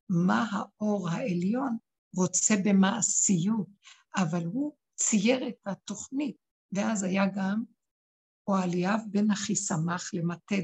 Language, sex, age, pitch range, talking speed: Hebrew, female, 60-79, 180-230 Hz, 105 wpm